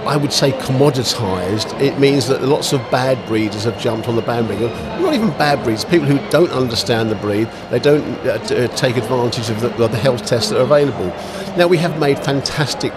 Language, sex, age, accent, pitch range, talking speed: English, male, 50-69, British, 115-145 Hz, 210 wpm